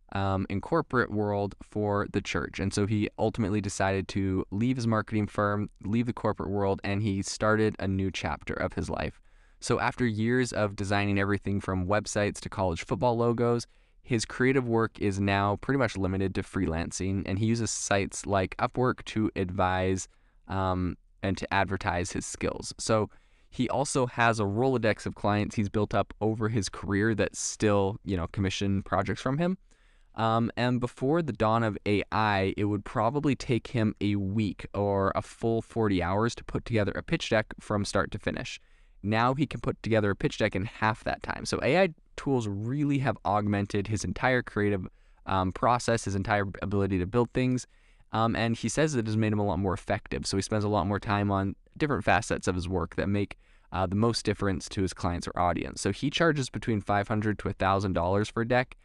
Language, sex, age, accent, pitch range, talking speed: English, male, 20-39, American, 95-115 Hz, 200 wpm